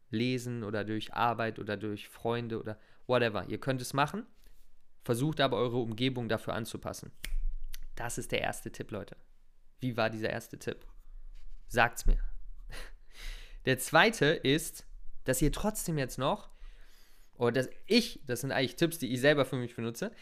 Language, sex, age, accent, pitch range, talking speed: German, male, 20-39, German, 115-145 Hz, 155 wpm